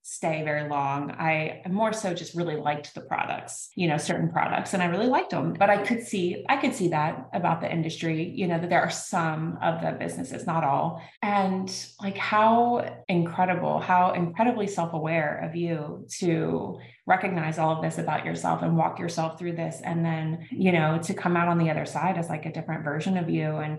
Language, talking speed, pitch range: English, 210 wpm, 155-180 Hz